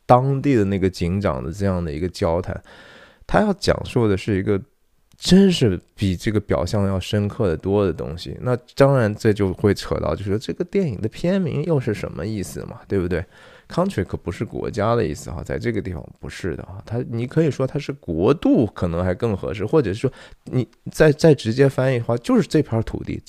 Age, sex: 20-39, male